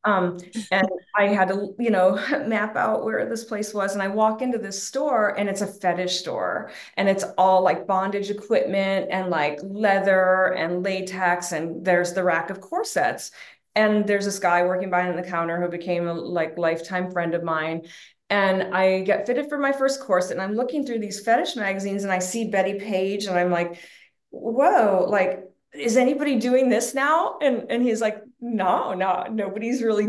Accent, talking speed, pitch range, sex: American, 190 wpm, 180-210 Hz, female